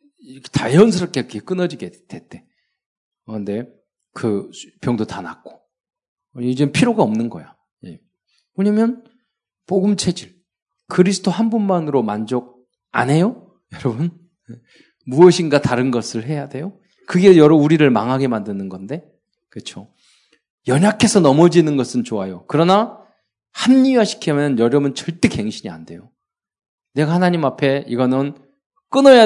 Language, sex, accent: Korean, male, native